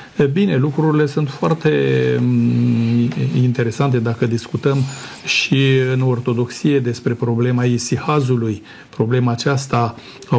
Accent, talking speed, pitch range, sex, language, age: native, 90 wpm, 120-145 Hz, male, Romanian, 50-69